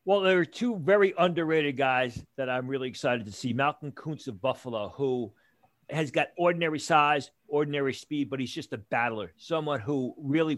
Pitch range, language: 125-155 Hz, English